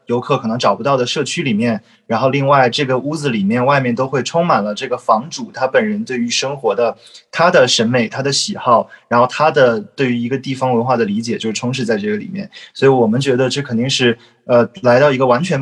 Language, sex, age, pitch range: Chinese, male, 20-39, 120-140 Hz